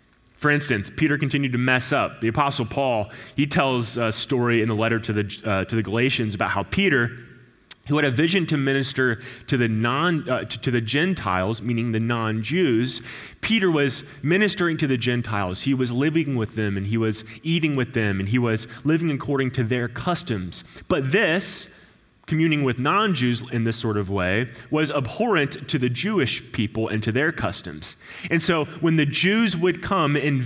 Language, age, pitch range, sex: English, 20-39, 115-155 Hz, male